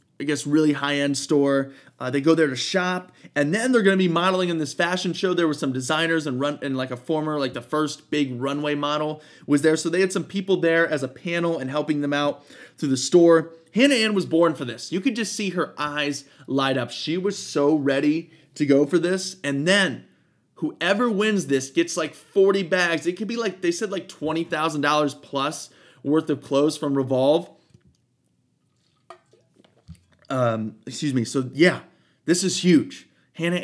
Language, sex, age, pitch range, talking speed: English, male, 20-39, 140-175 Hz, 195 wpm